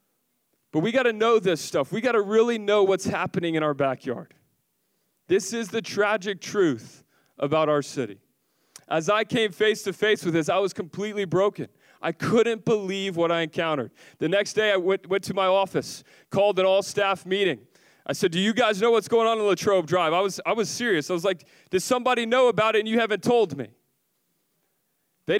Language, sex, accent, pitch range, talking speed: English, male, American, 175-210 Hz, 205 wpm